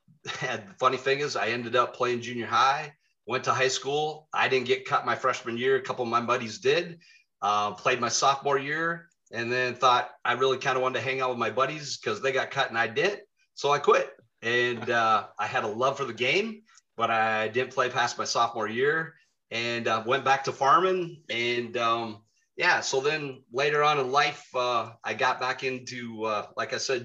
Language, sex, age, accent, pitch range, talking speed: English, male, 30-49, American, 115-145 Hz, 215 wpm